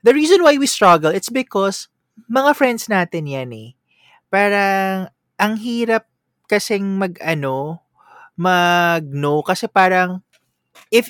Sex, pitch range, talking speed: male, 135-200 Hz, 120 wpm